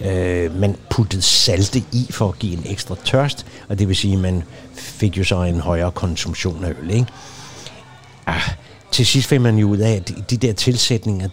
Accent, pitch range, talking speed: native, 95-120 Hz, 195 wpm